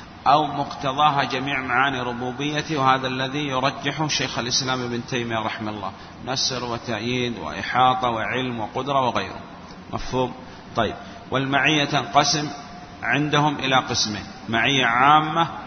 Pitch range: 120-140 Hz